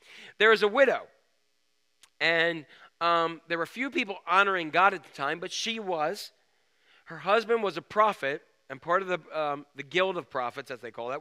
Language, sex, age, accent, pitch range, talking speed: English, male, 40-59, American, 145-210 Hz, 195 wpm